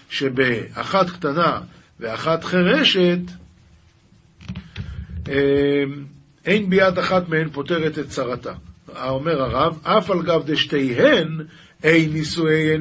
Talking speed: 90 wpm